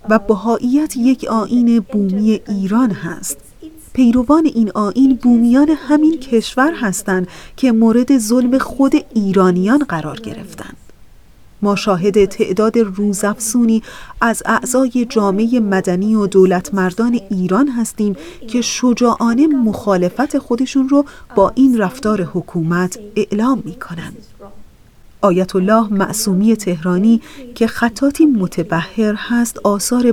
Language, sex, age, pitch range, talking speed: Persian, female, 30-49, 195-245 Hz, 105 wpm